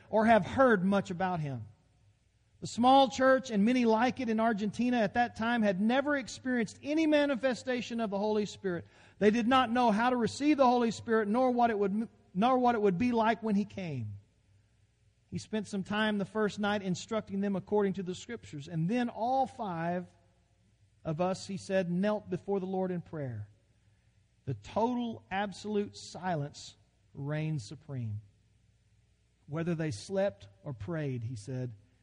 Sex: male